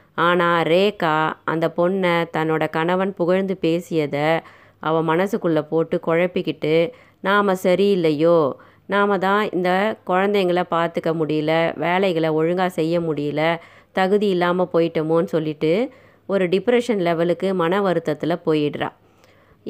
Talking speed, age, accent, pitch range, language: 105 wpm, 20-39, native, 165-200 Hz, Tamil